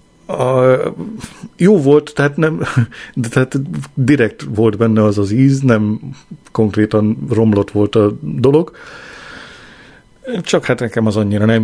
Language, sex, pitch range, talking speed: Hungarian, male, 105-125 Hz, 115 wpm